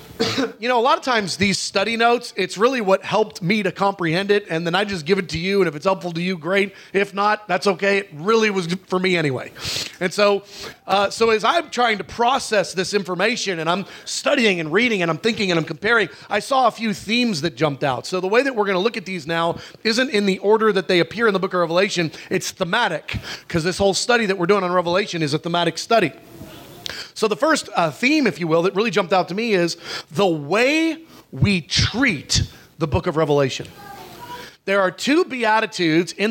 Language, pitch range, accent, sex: English, 170-220 Hz, American, male